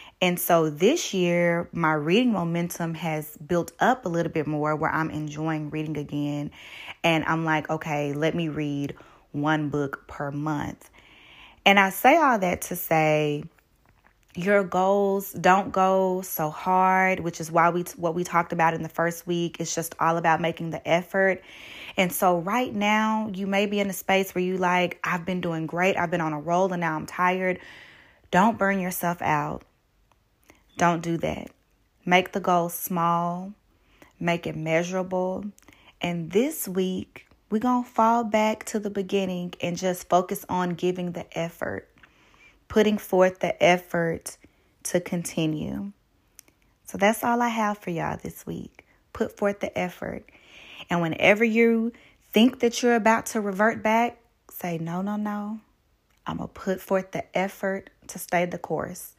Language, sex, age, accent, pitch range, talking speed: English, female, 20-39, American, 165-195 Hz, 165 wpm